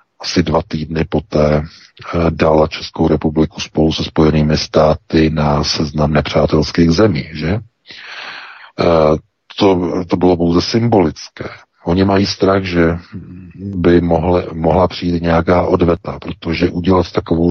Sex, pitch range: male, 80-90 Hz